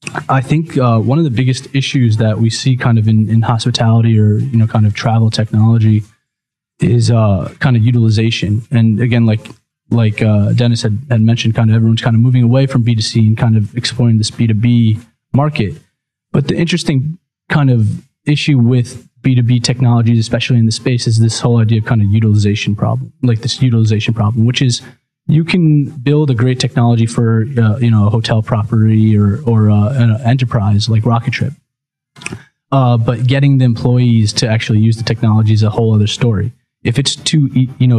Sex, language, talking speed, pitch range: male, English, 195 wpm, 110-130 Hz